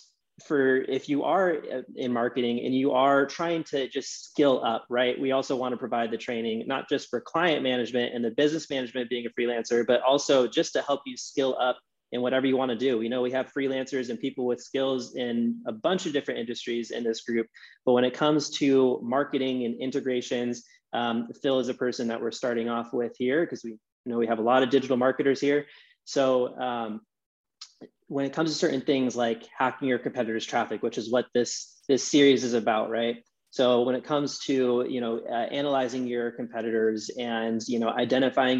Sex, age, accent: male, 20-39, American